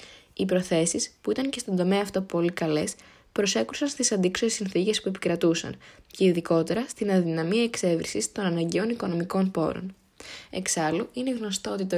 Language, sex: Greek, female